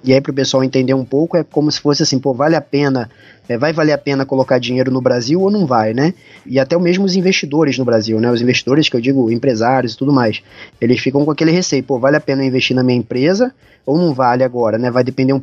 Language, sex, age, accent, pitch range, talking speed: Portuguese, male, 20-39, Brazilian, 130-165 Hz, 260 wpm